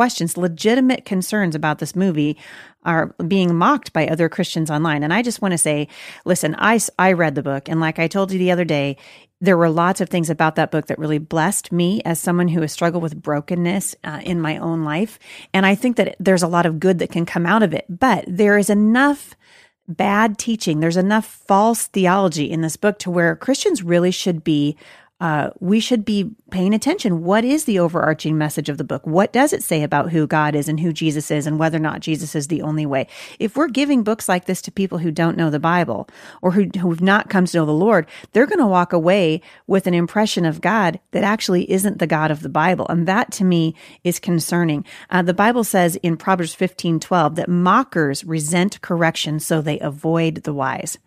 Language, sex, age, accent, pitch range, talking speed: English, female, 40-59, American, 160-195 Hz, 220 wpm